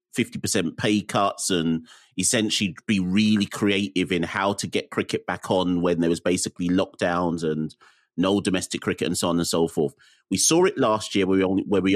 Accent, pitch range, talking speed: British, 90-140 Hz, 200 wpm